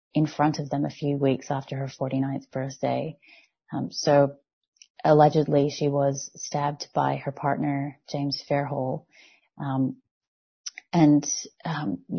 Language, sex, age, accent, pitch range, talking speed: English, female, 30-49, American, 135-150 Hz, 125 wpm